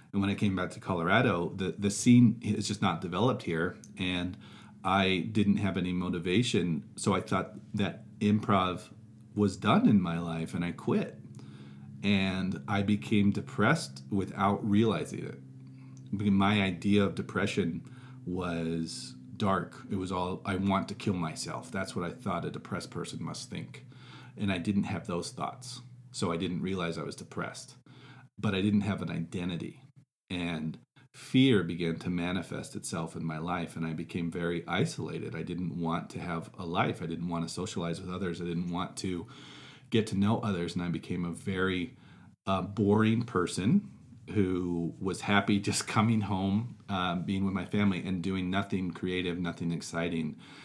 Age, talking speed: 40-59, 170 wpm